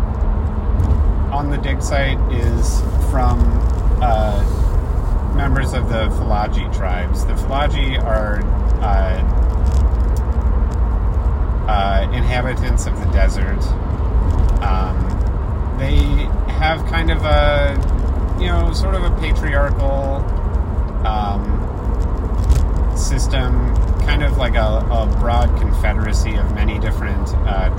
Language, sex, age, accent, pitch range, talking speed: English, male, 30-49, American, 70-90 Hz, 100 wpm